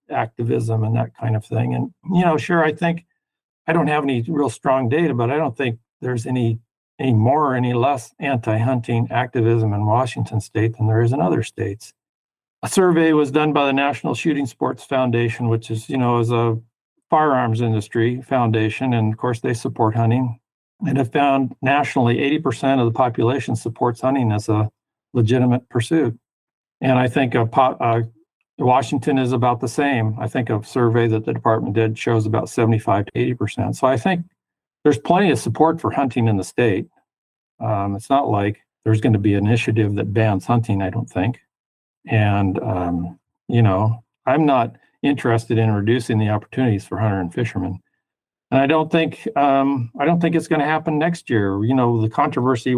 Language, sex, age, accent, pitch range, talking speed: English, male, 50-69, American, 110-135 Hz, 190 wpm